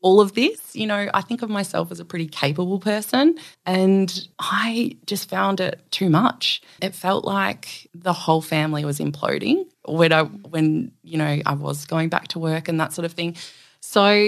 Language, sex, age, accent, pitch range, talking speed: English, female, 20-39, Australian, 160-195 Hz, 195 wpm